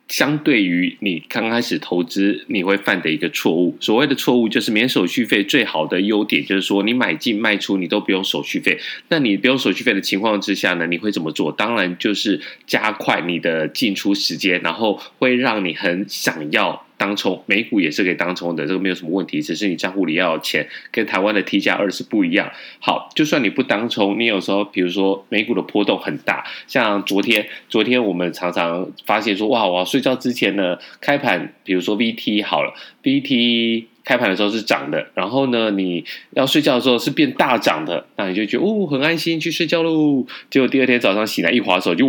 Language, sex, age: Chinese, male, 20-39